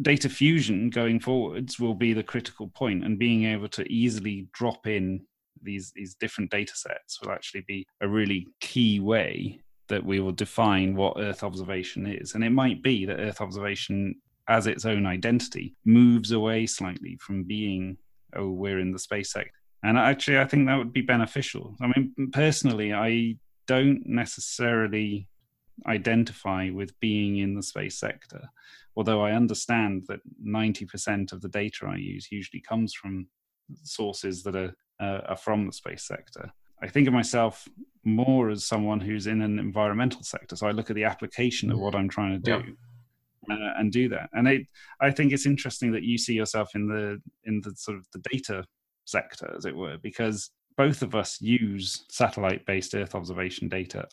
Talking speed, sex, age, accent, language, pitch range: 175 wpm, male, 30-49, British, English, 100-120 Hz